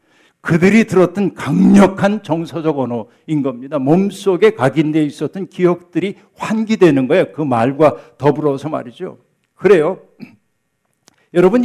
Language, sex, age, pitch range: Korean, male, 60-79, 145-190 Hz